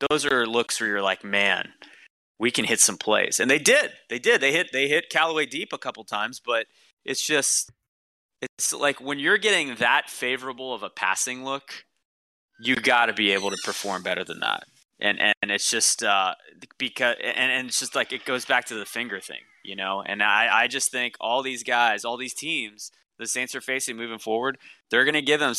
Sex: male